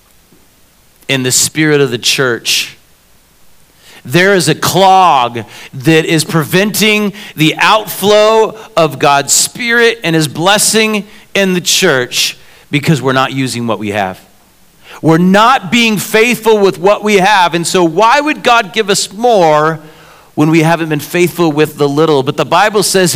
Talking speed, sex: 155 wpm, male